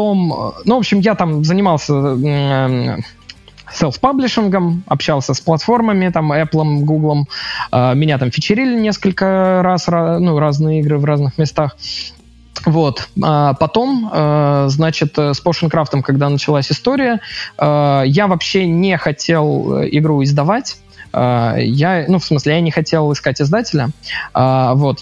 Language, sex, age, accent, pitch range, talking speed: Russian, male, 20-39, native, 145-185 Hz, 135 wpm